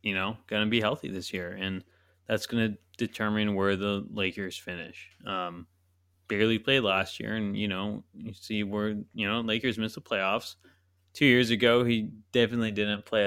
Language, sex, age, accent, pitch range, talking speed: English, male, 20-39, American, 90-115 Hz, 185 wpm